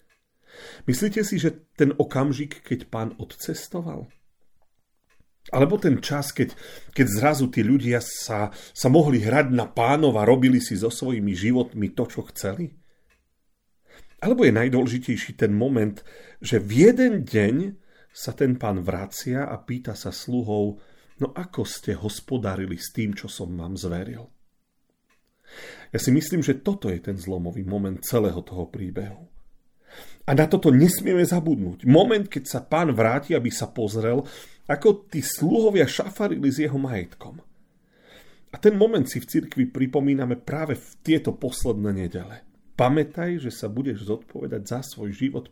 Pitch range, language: 110-150 Hz, Slovak